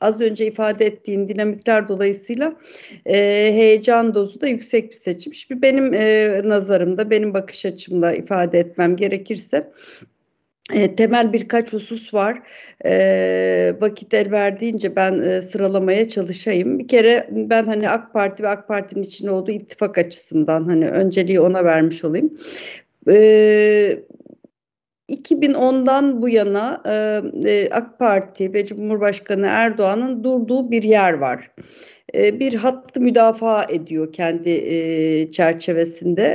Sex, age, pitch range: female, 60-79, 185-230 Hz